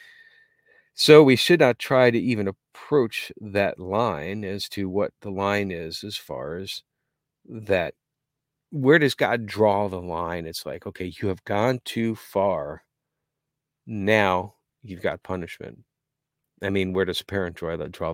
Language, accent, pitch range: English, American, 95-140 Hz